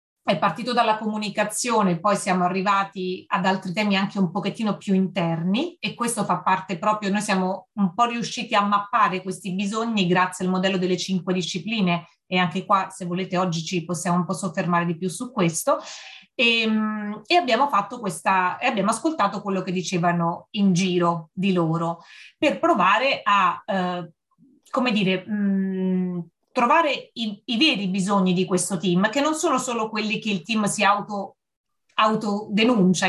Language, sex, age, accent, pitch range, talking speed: Italian, female, 30-49, native, 185-215 Hz, 165 wpm